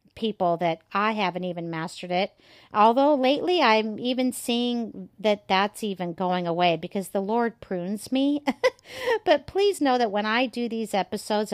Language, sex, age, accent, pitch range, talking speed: English, female, 50-69, American, 175-210 Hz, 160 wpm